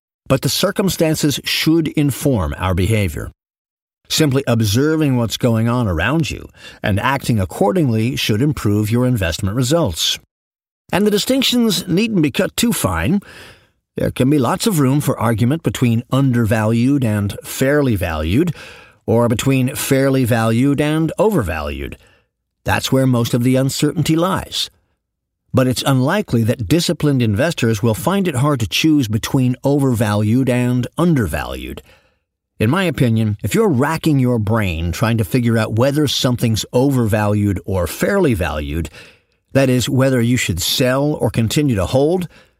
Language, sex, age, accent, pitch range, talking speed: English, male, 50-69, American, 105-145 Hz, 140 wpm